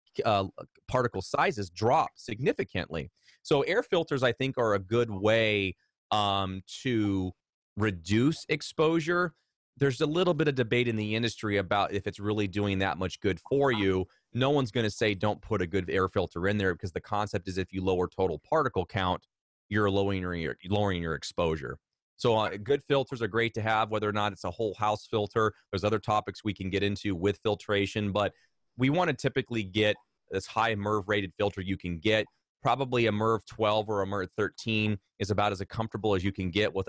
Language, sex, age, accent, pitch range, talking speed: English, male, 30-49, American, 100-120 Hz, 195 wpm